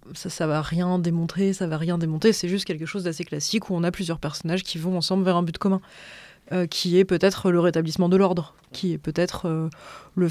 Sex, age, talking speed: female, 20-39, 235 wpm